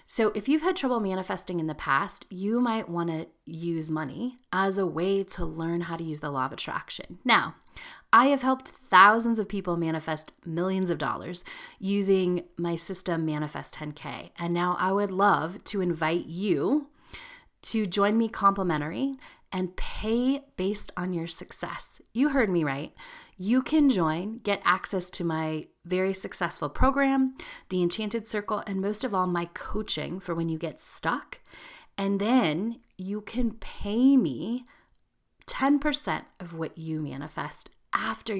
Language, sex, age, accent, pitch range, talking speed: English, female, 30-49, American, 170-220 Hz, 160 wpm